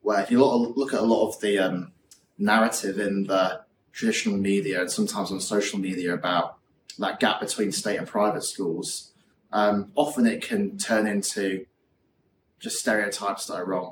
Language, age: English, 20-39